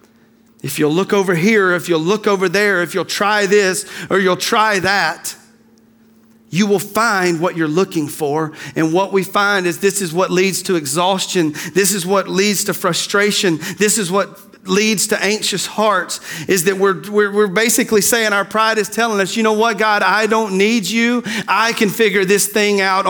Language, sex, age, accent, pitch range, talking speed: English, male, 40-59, American, 170-220 Hz, 195 wpm